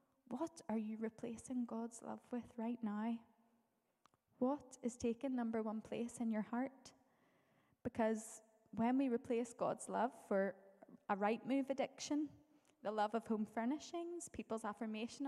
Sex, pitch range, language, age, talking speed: female, 225-260 Hz, English, 10-29, 140 wpm